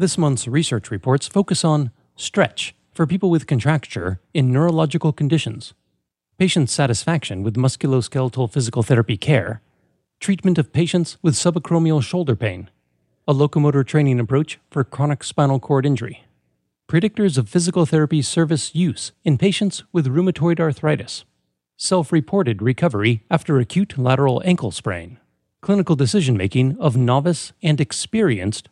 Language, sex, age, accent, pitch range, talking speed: English, male, 40-59, American, 120-165 Hz, 130 wpm